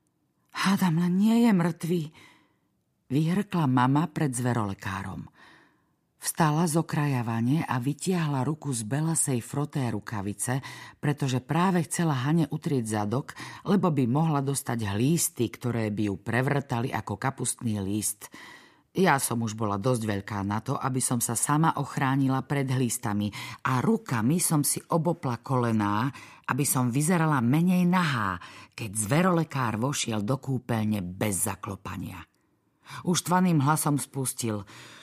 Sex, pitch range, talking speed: female, 115-170 Hz, 125 wpm